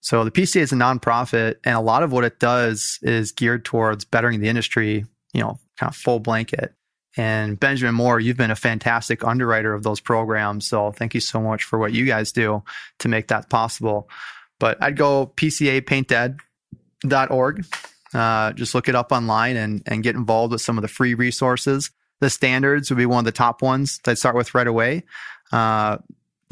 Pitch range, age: 110-130 Hz, 20-39